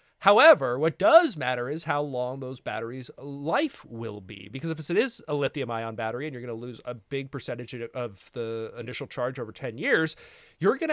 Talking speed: 205 wpm